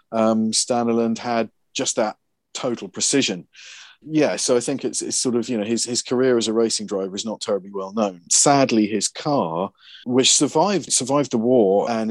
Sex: male